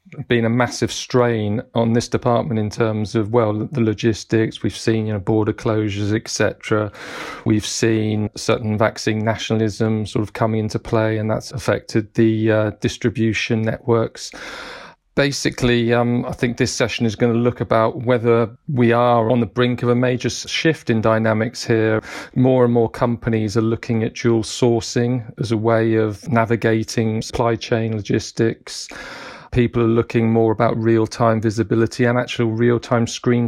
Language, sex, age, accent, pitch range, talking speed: English, male, 40-59, British, 110-120 Hz, 160 wpm